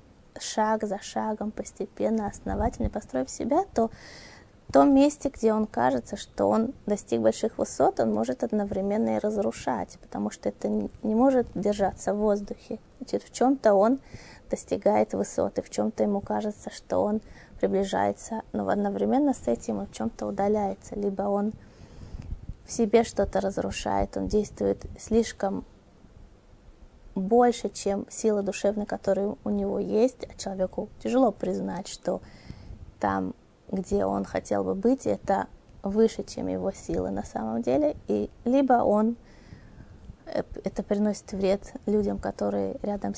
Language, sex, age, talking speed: Russian, female, 20-39, 140 wpm